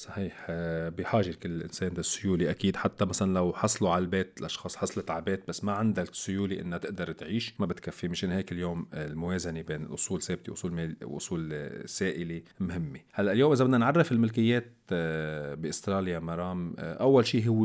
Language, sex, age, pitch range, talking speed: Arabic, male, 40-59, 85-105 Hz, 155 wpm